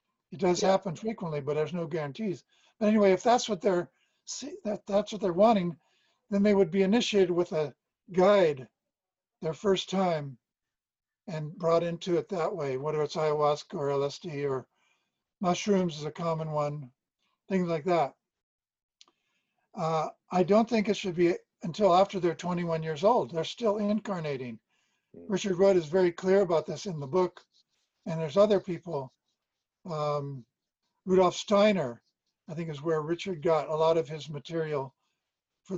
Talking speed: 160 wpm